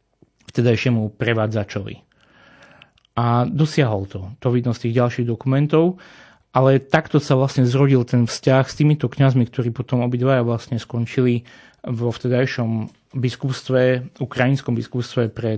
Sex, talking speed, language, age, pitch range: male, 125 wpm, Slovak, 30-49, 120-135 Hz